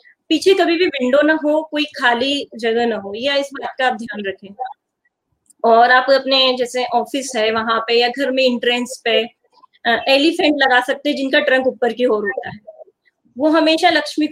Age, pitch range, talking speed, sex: 20-39, 245-315 Hz, 185 wpm, female